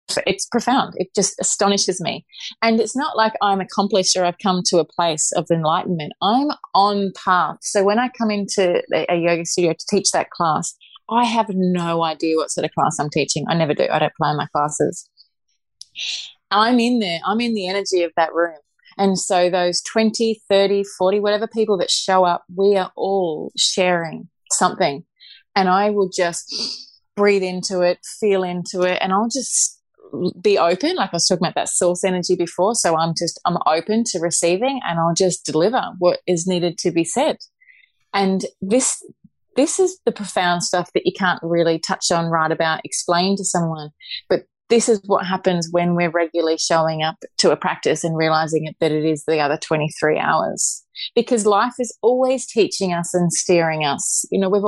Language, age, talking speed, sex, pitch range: English, 30-49, 190 wpm, female, 170-205 Hz